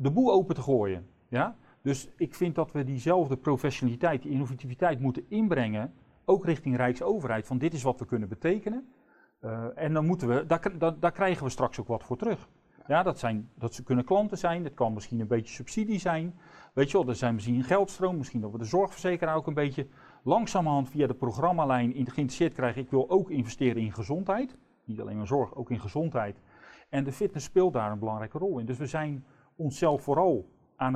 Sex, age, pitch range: male, 40-59, 120-165 Hz